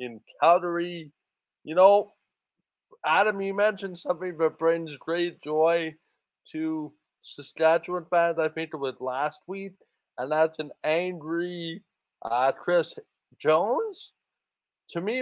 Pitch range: 160-200 Hz